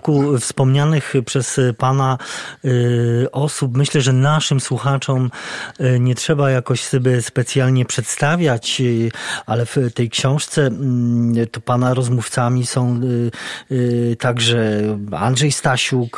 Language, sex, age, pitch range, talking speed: Polish, male, 40-59, 125-150 Hz, 115 wpm